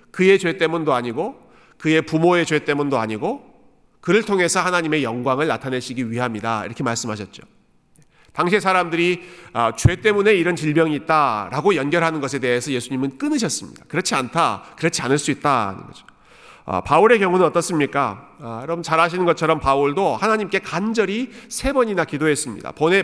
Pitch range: 135-195 Hz